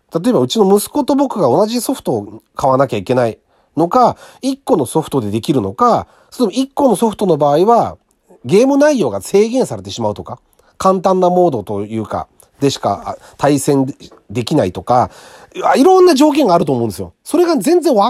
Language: Japanese